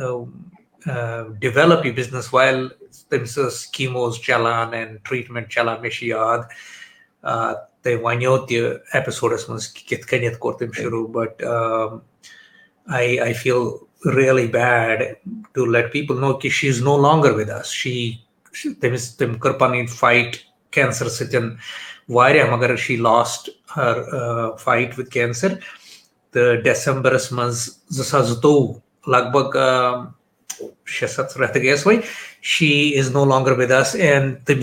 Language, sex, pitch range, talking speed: Urdu, male, 120-150 Hz, 90 wpm